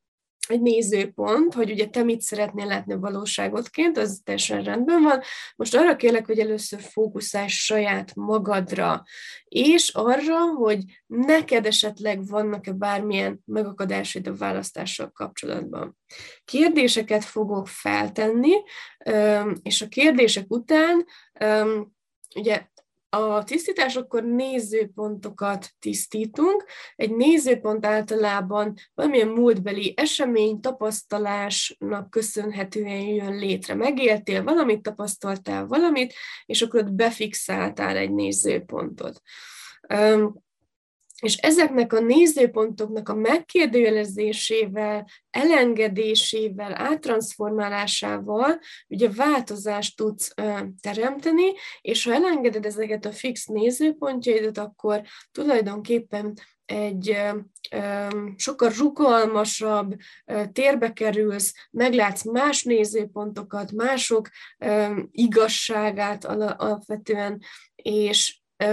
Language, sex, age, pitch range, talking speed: Hungarian, female, 20-39, 205-240 Hz, 85 wpm